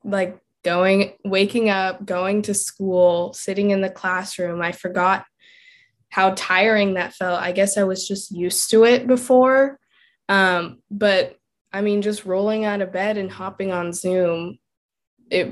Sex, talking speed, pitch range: female, 155 wpm, 180-210 Hz